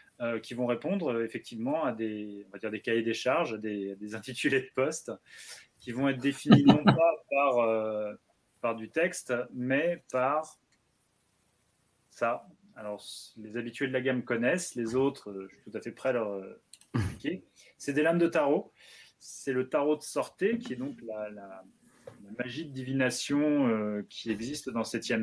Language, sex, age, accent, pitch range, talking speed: French, male, 30-49, French, 110-140 Hz, 180 wpm